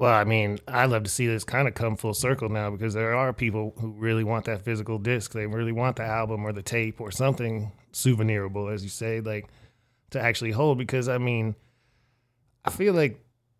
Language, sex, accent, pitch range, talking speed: English, male, American, 110-125 Hz, 210 wpm